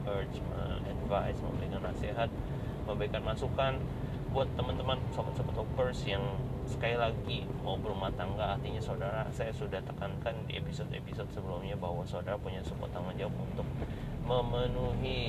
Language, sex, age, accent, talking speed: Indonesian, male, 30-49, native, 115 wpm